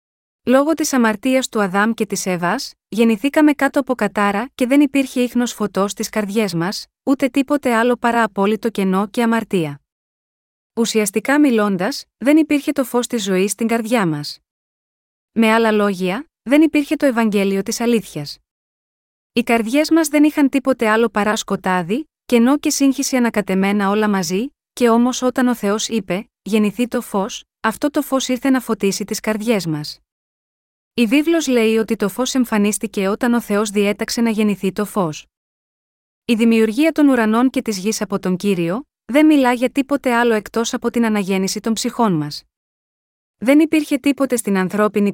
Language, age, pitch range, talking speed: Greek, 30-49, 205-255 Hz, 155 wpm